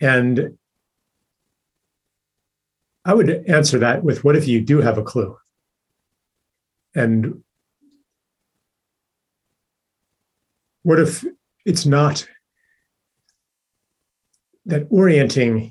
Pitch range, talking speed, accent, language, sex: 115-155 Hz, 75 wpm, American, English, male